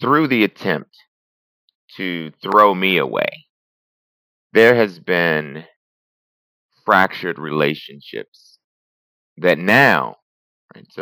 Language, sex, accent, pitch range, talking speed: English, male, American, 70-95 Hz, 80 wpm